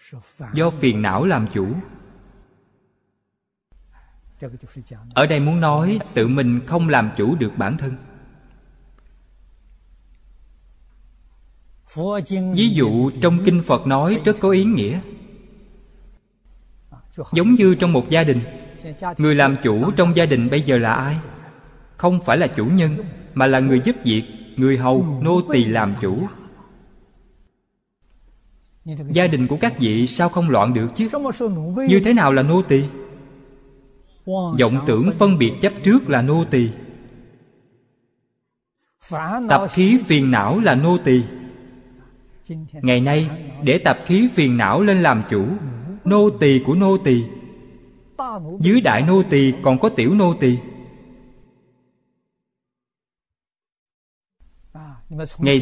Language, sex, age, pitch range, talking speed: Vietnamese, male, 20-39, 125-175 Hz, 125 wpm